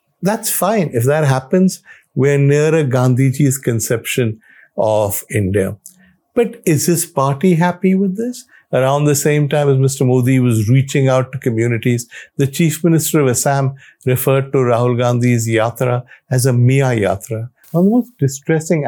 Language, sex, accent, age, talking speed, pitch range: English, male, Indian, 50-69, 155 wpm, 120-145 Hz